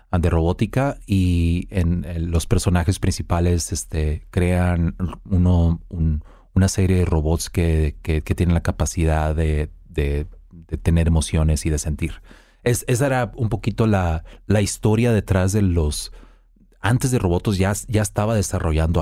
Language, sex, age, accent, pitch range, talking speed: Spanish, male, 40-59, Mexican, 85-115 Hz, 150 wpm